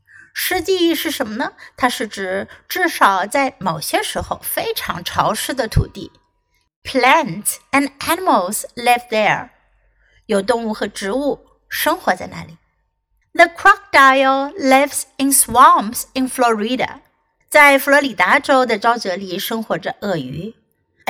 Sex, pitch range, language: female, 225-295 Hz, Chinese